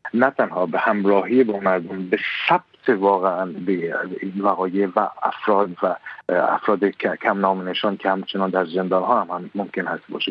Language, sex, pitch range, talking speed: Persian, male, 95-130 Hz, 145 wpm